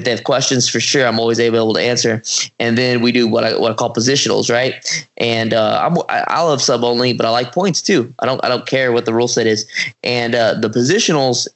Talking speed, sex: 250 wpm, male